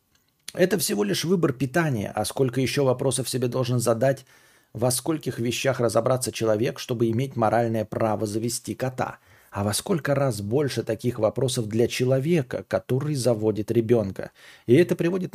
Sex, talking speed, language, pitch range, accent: male, 150 wpm, Russian, 110-155 Hz, native